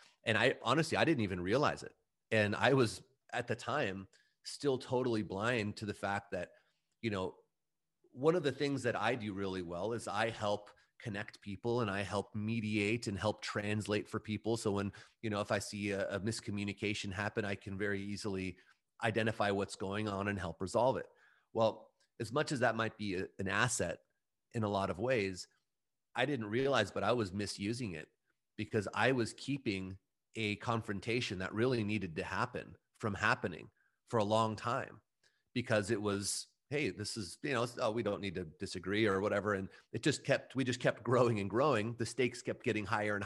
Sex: male